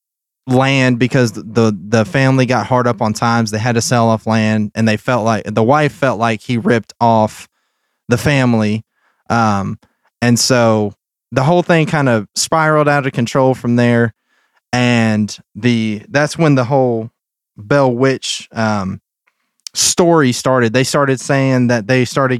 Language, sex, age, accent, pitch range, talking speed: English, male, 20-39, American, 115-135 Hz, 160 wpm